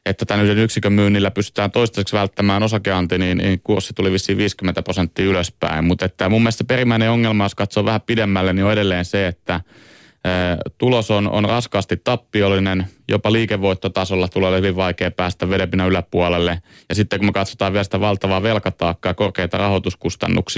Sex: male